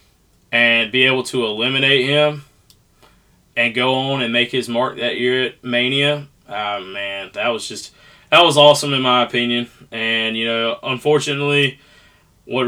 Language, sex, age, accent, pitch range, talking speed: English, male, 20-39, American, 115-135 Hz, 155 wpm